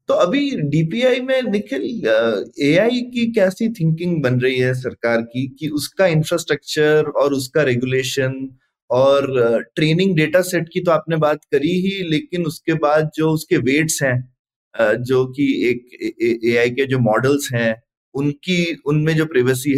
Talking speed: 150 wpm